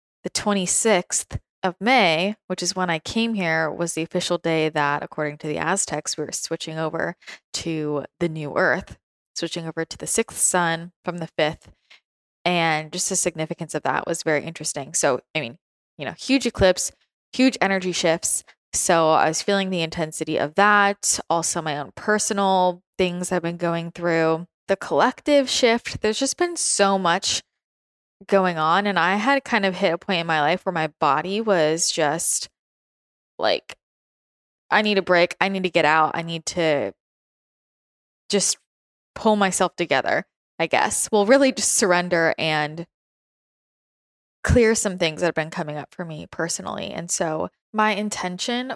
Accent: American